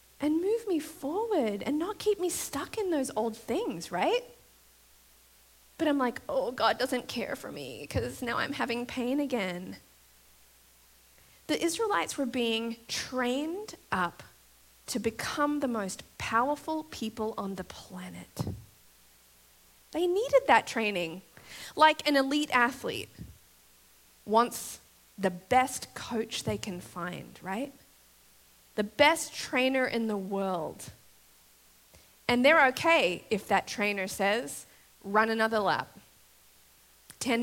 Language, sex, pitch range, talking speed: English, female, 180-265 Hz, 125 wpm